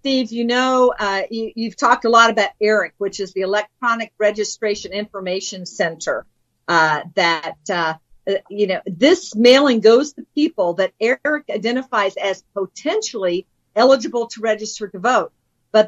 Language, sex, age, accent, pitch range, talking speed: English, female, 50-69, American, 190-235 Hz, 145 wpm